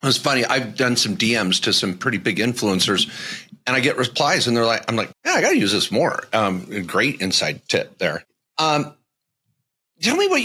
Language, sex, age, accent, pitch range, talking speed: English, male, 40-59, American, 115-160 Hz, 205 wpm